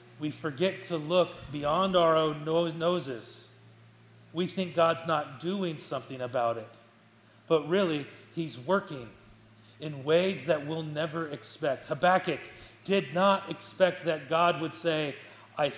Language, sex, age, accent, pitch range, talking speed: English, male, 40-59, American, 140-180 Hz, 135 wpm